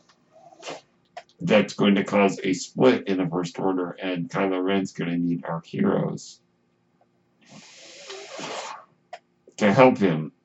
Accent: American